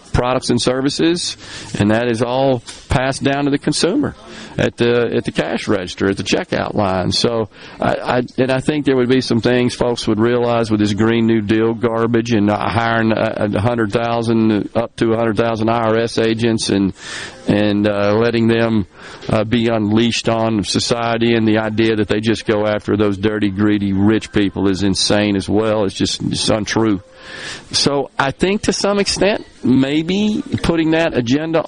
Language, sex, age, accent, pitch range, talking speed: English, male, 40-59, American, 105-130 Hz, 180 wpm